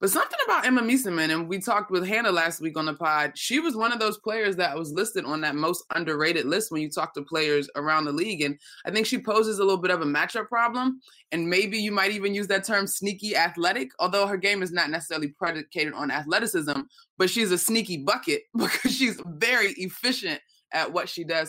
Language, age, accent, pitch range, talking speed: English, 20-39, American, 160-230 Hz, 225 wpm